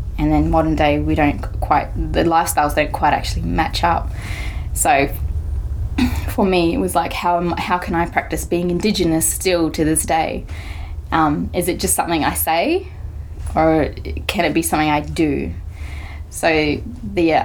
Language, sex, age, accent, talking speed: English, female, 20-39, Australian, 160 wpm